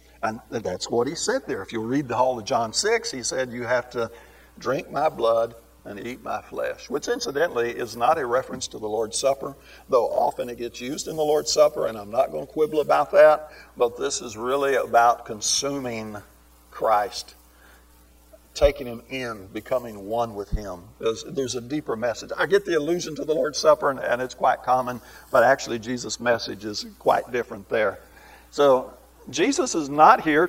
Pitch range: 125-180 Hz